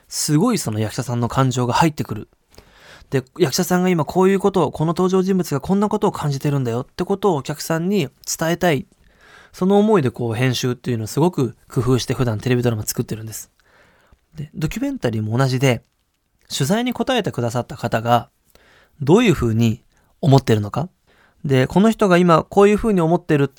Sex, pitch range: male, 120-175 Hz